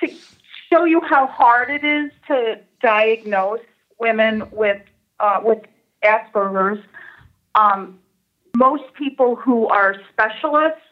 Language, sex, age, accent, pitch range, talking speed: English, female, 40-59, American, 185-220 Hz, 110 wpm